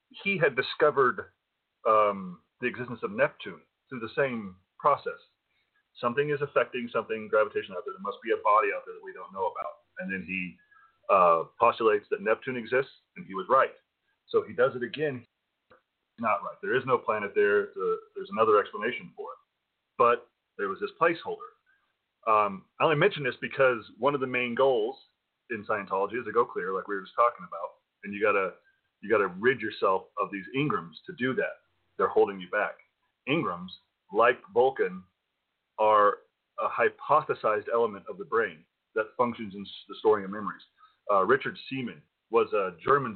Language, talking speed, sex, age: English, 185 wpm, male, 30-49